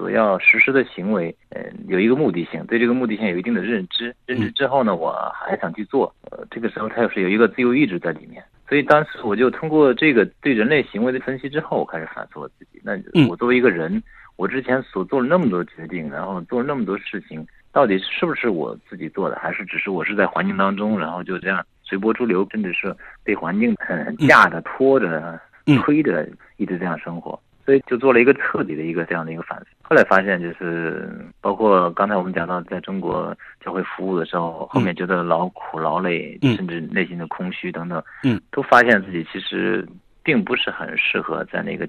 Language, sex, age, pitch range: Chinese, male, 50-69, 85-120 Hz